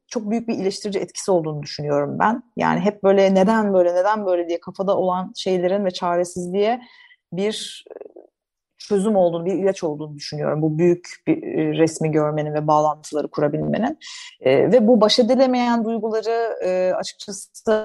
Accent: native